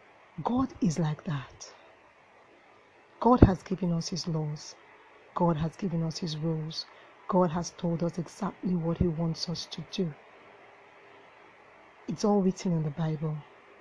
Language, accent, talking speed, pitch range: English, Nigerian, 145 wpm, 170-225 Hz